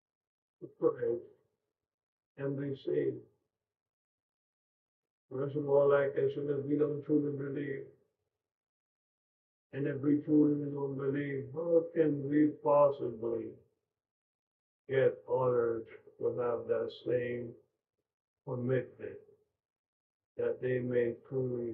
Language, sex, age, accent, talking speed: English, male, 50-69, American, 95 wpm